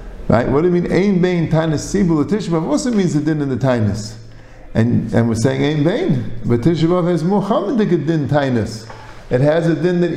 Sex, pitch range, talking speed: male, 115-180 Hz, 205 wpm